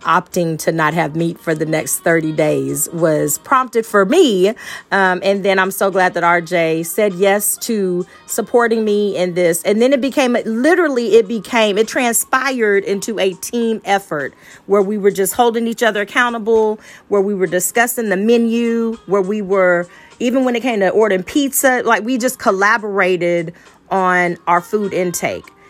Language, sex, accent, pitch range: English, female, American, 180-225 Hz